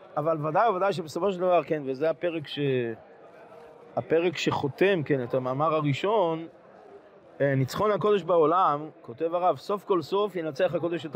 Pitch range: 160-225 Hz